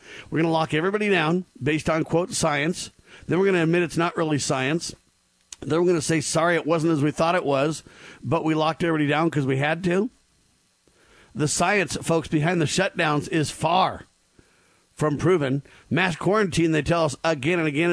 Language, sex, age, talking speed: English, male, 50-69, 200 wpm